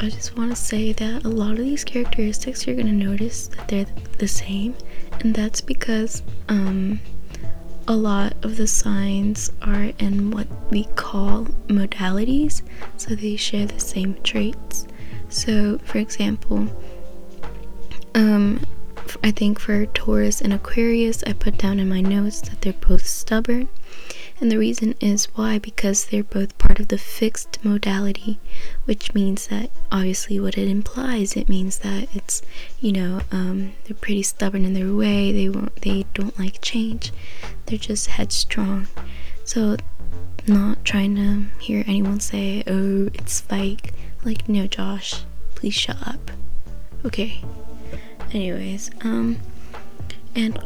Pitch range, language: 190-220 Hz, English